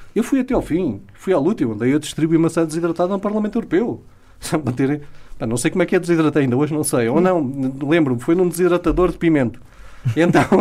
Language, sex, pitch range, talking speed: Portuguese, male, 125-180 Hz, 205 wpm